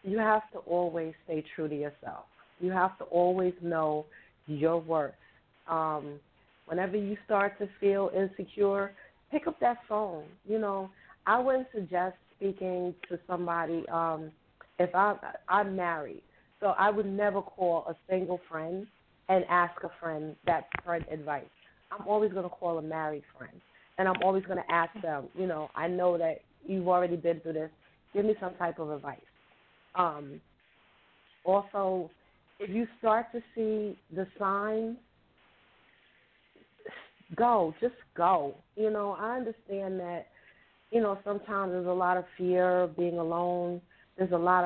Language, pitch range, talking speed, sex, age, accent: English, 170-205 Hz, 155 wpm, female, 40-59, American